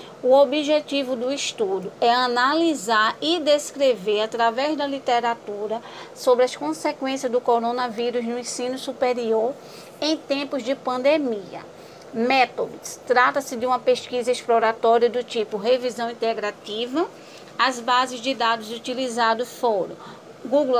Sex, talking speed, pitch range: female, 115 wpm, 240-285 Hz